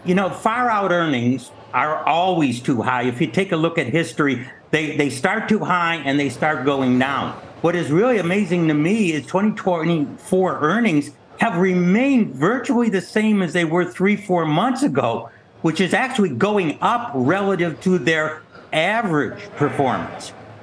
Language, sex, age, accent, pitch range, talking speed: English, male, 60-79, American, 150-190 Hz, 165 wpm